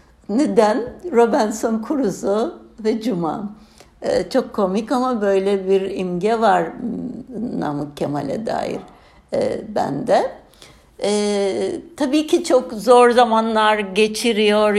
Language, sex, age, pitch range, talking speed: Turkish, female, 60-79, 185-225 Hz, 100 wpm